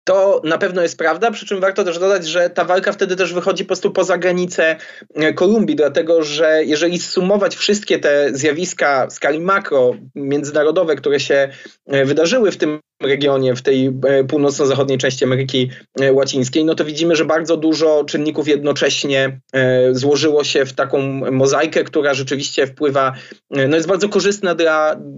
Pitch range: 135-165 Hz